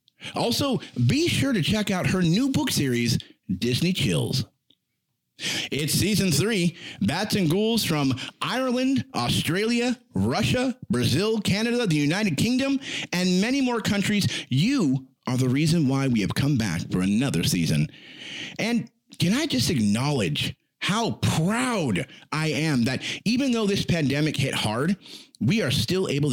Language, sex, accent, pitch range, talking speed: English, male, American, 130-210 Hz, 145 wpm